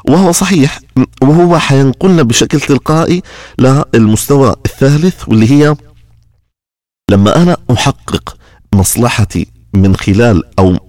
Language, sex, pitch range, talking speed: Arabic, male, 95-135 Hz, 95 wpm